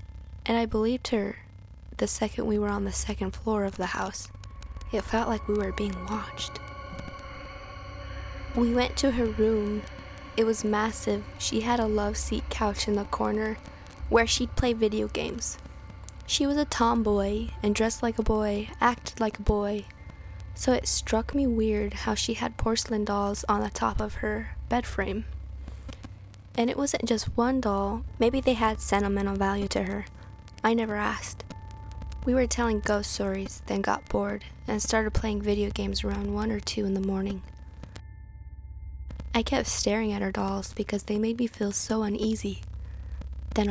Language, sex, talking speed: English, female, 170 wpm